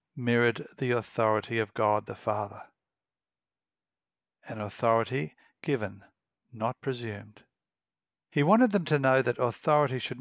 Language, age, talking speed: English, 60-79, 120 wpm